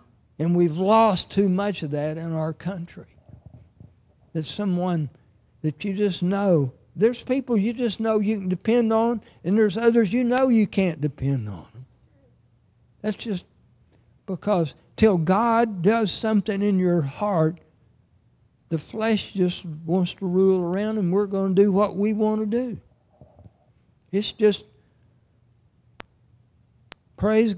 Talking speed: 140 wpm